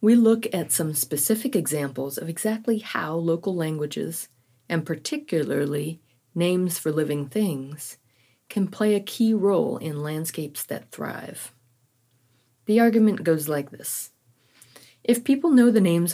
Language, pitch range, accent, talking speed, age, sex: English, 130-180 Hz, American, 135 wpm, 40-59, female